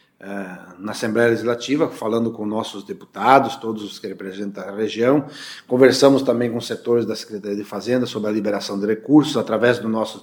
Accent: Brazilian